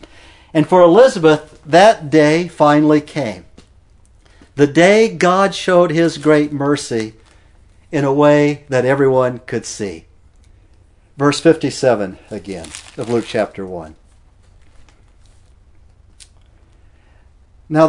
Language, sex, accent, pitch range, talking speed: English, male, American, 120-165 Hz, 95 wpm